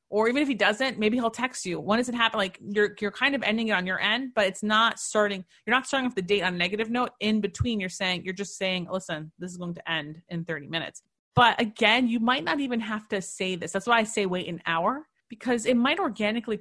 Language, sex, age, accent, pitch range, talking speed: English, female, 30-49, American, 175-230 Hz, 265 wpm